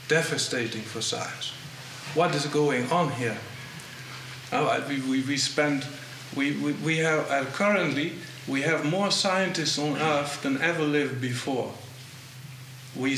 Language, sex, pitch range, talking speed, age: Italian, male, 130-155 Hz, 130 wpm, 50-69